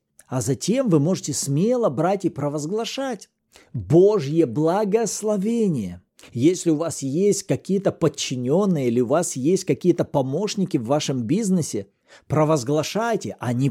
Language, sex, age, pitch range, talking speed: Russian, male, 50-69, 145-205 Hz, 120 wpm